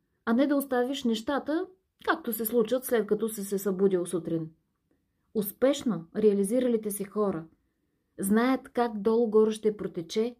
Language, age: Bulgarian, 30-49